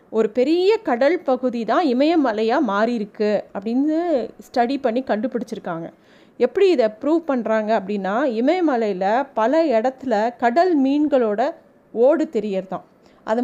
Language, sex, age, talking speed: Tamil, female, 30-49, 105 wpm